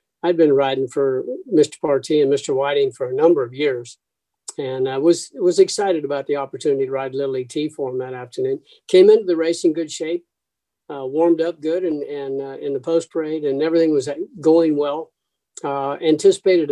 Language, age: English, 50-69